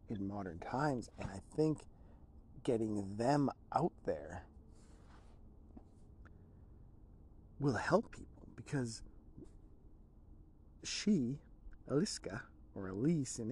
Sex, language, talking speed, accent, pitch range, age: male, English, 85 wpm, American, 95-120 Hz, 40-59